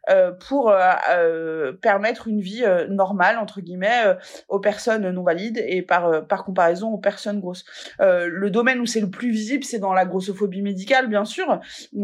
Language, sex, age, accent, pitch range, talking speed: French, female, 20-39, French, 190-230 Hz, 200 wpm